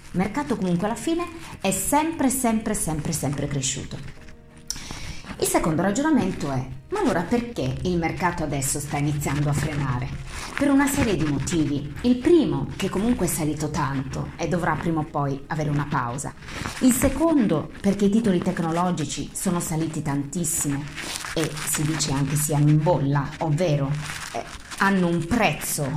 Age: 30-49